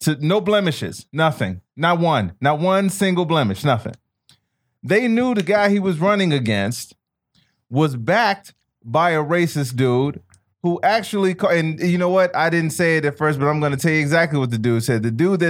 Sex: male